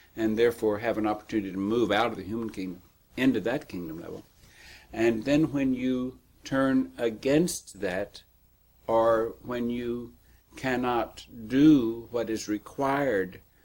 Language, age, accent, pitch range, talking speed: English, 60-79, American, 95-120 Hz, 135 wpm